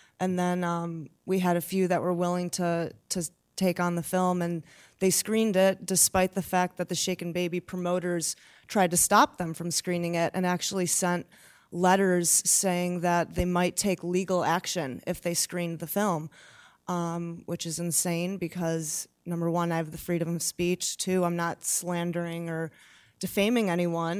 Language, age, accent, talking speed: English, 30-49, American, 175 wpm